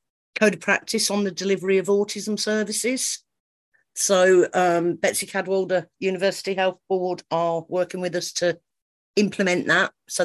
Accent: British